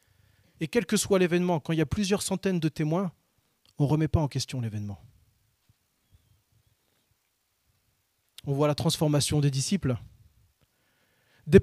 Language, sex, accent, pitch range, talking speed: French, male, French, 110-180 Hz, 140 wpm